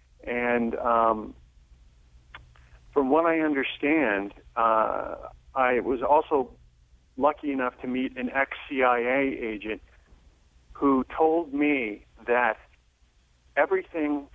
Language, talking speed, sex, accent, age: English, 90 wpm, male, American, 40-59